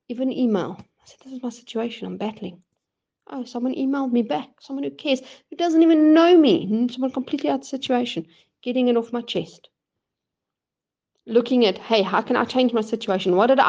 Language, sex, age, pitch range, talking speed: English, female, 40-59, 185-245 Hz, 195 wpm